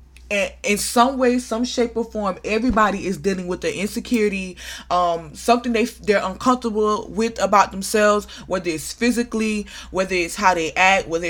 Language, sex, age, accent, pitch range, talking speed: English, female, 20-39, American, 165-225 Hz, 160 wpm